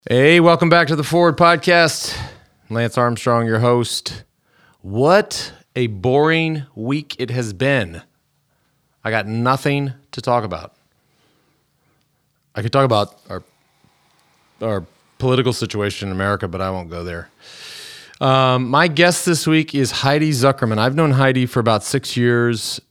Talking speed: 140 wpm